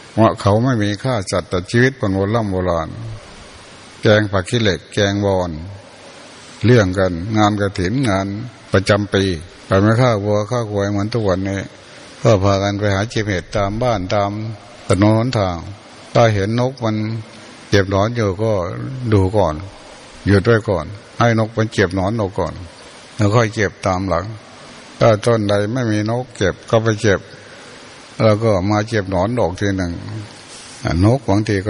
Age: 60-79